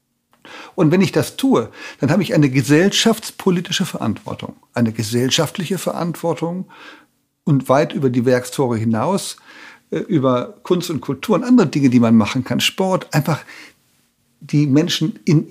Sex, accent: male, German